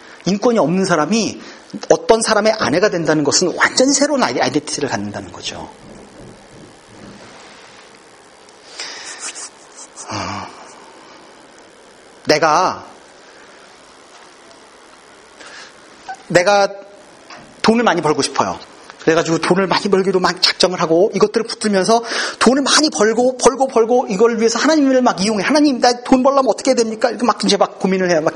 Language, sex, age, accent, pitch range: Korean, male, 40-59, native, 170-250 Hz